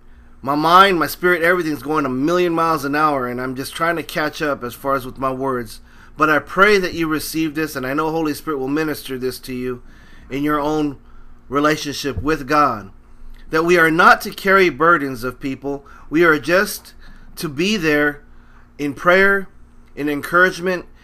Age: 30-49